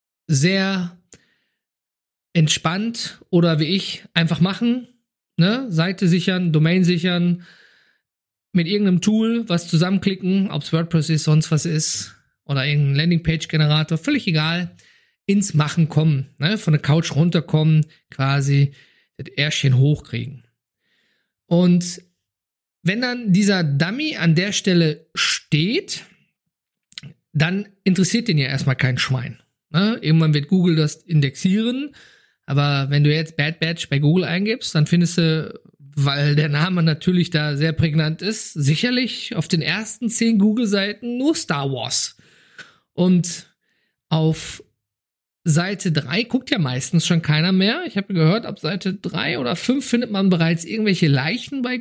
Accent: German